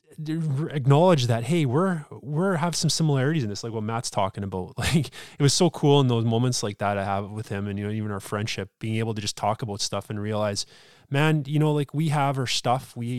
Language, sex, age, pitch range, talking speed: English, male, 20-39, 100-130 Hz, 240 wpm